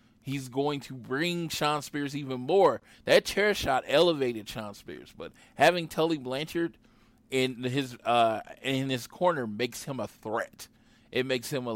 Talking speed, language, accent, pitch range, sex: 165 wpm, English, American, 115-140 Hz, male